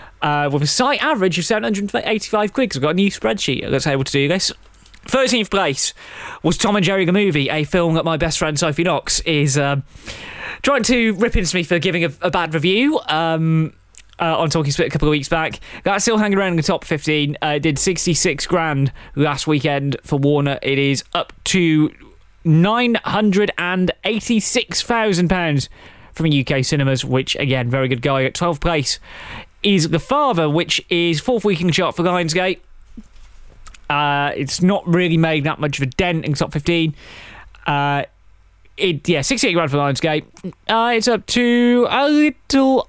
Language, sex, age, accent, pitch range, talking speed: English, male, 20-39, British, 150-200 Hz, 175 wpm